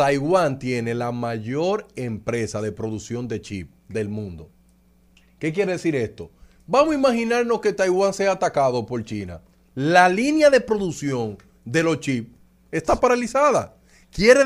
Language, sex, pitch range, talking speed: Spanish, male, 120-180 Hz, 140 wpm